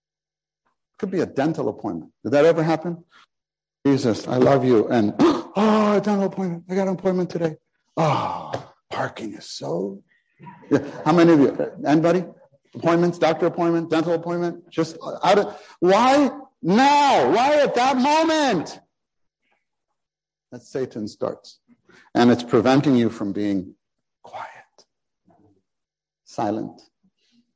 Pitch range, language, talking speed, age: 110-180 Hz, English, 125 wpm, 50-69